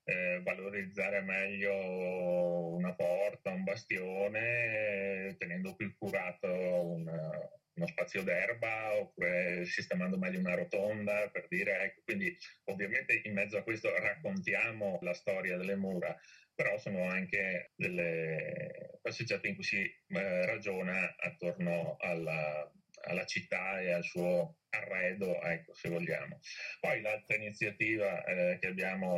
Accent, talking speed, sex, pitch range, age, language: native, 125 wpm, male, 90-110 Hz, 30-49, Italian